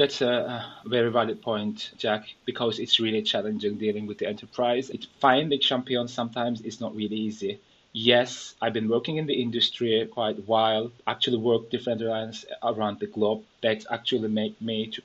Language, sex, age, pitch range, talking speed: English, male, 30-49, 110-130 Hz, 170 wpm